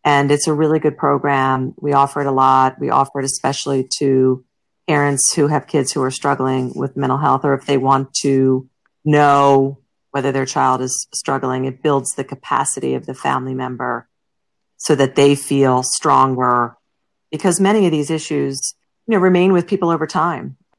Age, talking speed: 40-59, 180 wpm